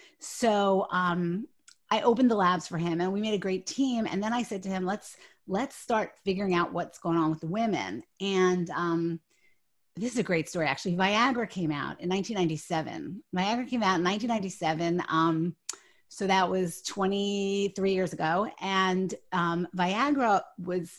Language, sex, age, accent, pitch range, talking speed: English, female, 30-49, American, 175-225 Hz, 170 wpm